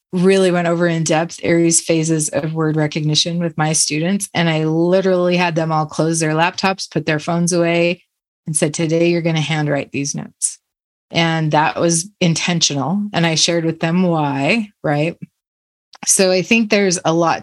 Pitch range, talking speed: 160-190 Hz, 180 wpm